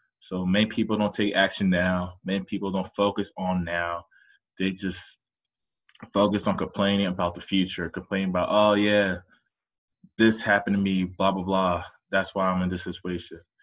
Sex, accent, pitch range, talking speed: male, American, 90-105 Hz, 165 wpm